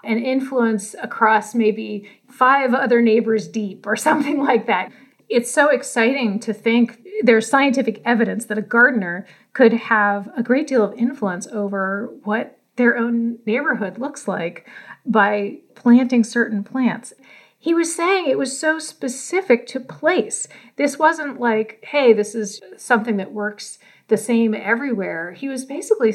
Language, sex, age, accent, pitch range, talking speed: English, female, 40-59, American, 205-255 Hz, 145 wpm